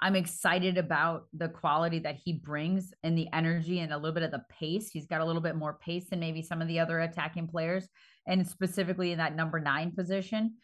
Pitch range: 155-185 Hz